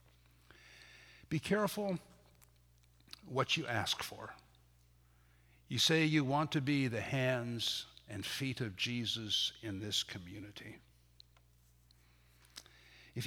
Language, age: English, 60-79